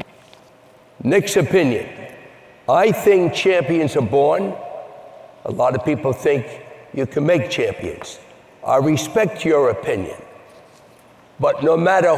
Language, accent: English, American